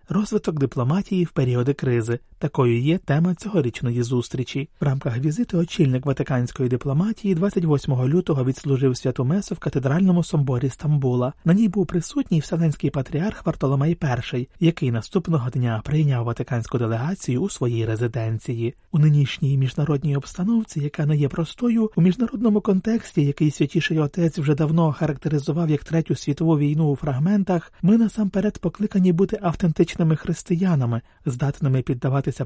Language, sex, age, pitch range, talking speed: Ukrainian, male, 30-49, 135-180 Hz, 135 wpm